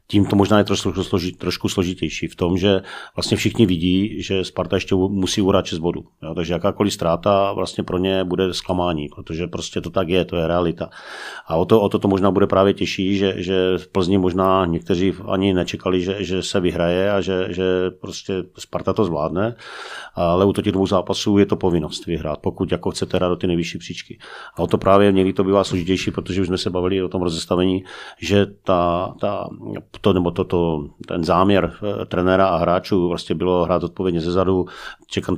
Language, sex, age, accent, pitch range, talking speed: Czech, male, 40-59, native, 90-95 Hz, 200 wpm